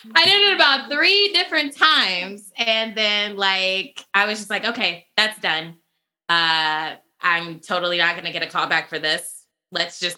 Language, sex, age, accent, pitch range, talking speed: English, female, 10-29, American, 170-245 Hz, 175 wpm